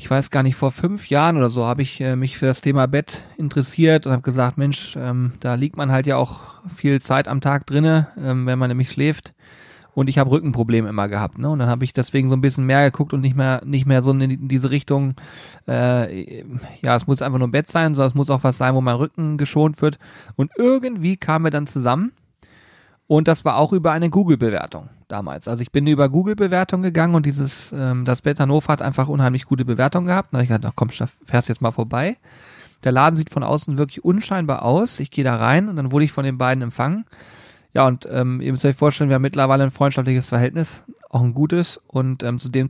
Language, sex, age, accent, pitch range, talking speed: German, male, 30-49, German, 125-150 Hz, 230 wpm